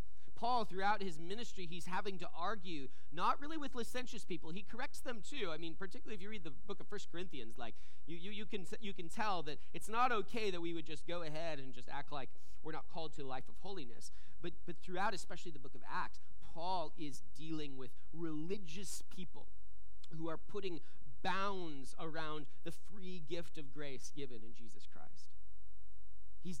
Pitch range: 115-180 Hz